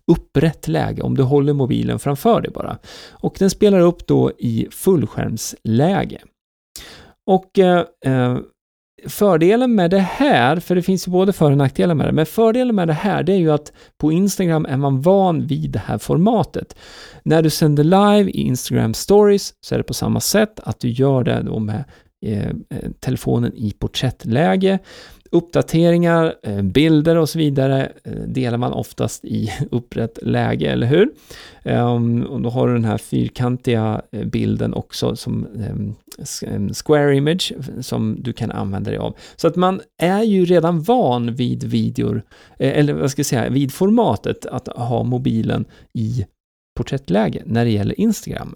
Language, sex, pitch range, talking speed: Swedish, male, 120-180 Hz, 160 wpm